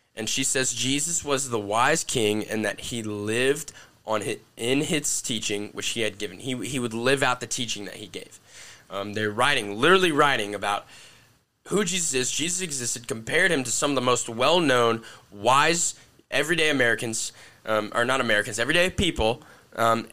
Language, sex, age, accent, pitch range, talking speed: English, male, 10-29, American, 110-140 Hz, 180 wpm